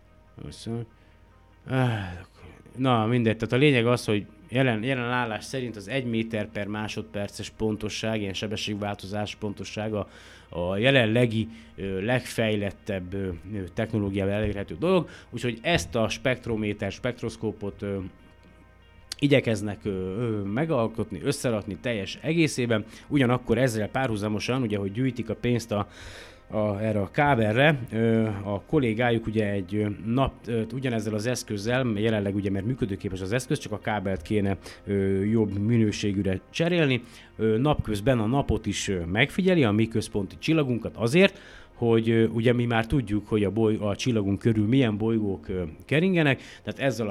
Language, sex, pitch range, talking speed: Hungarian, male, 100-120 Hz, 120 wpm